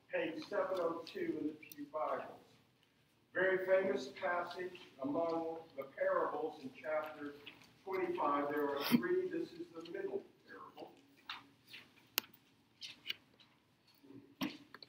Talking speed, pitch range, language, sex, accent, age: 95 wpm, 165-225 Hz, English, male, American, 50-69